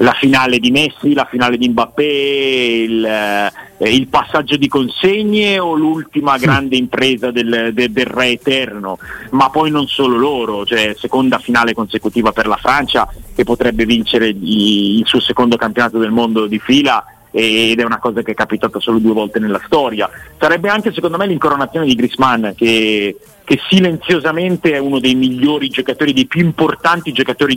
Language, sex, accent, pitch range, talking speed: Italian, male, native, 115-150 Hz, 165 wpm